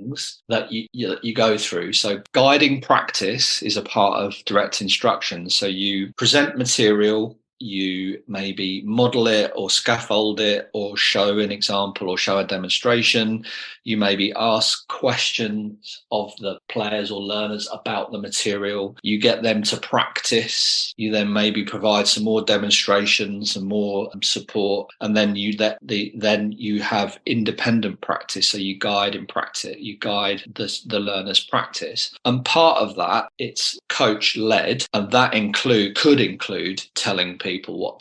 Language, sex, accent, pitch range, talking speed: English, male, British, 100-110 Hz, 155 wpm